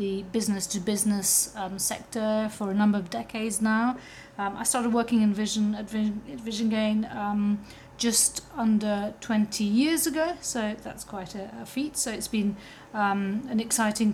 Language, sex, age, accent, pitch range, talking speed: English, female, 40-59, British, 205-235 Hz, 165 wpm